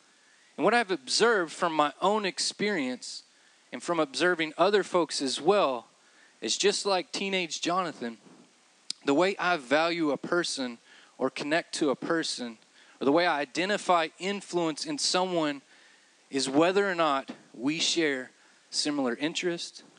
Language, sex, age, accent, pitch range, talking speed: English, male, 20-39, American, 135-210 Hz, 140 wpm